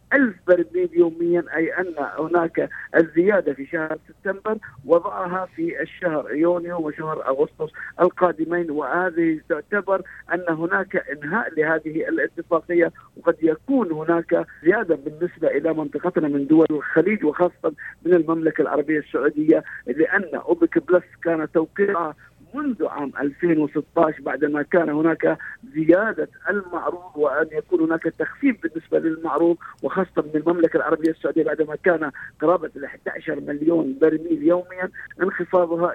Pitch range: 155-185 Hz